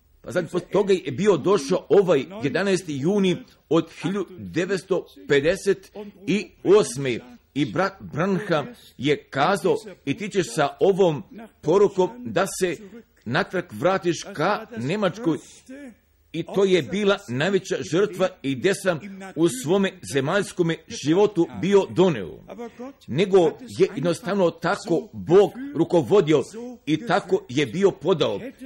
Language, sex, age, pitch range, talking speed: Croatian, male, 50-69, 160-200 Hz, 115 wpm